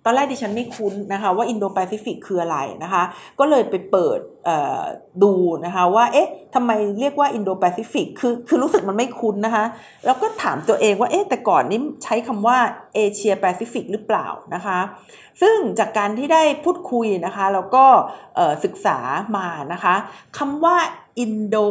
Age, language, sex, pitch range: 50-69, Thai, female, 200-265 Hz